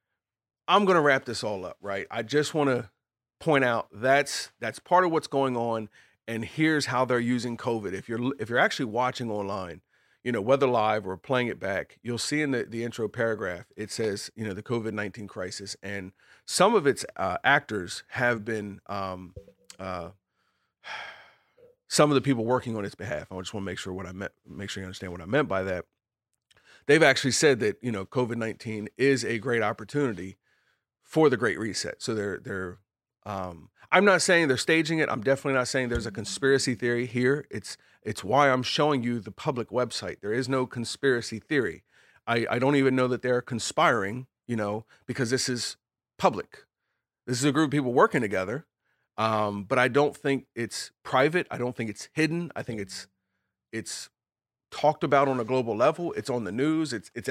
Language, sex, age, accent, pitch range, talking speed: English, male, 40-59, American, 105-135 Hz, 200 wpm